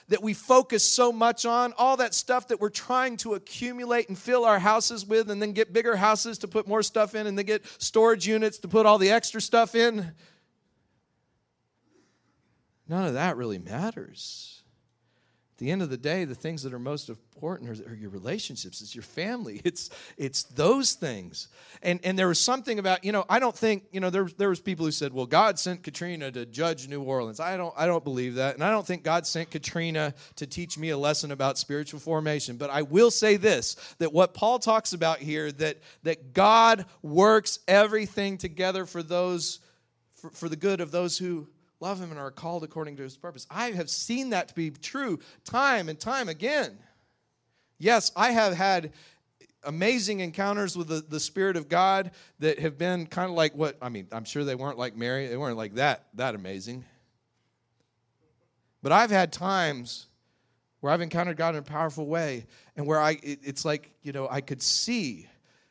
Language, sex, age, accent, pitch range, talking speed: English, male, 40-59, American, 145-210 Hz, 200 wpm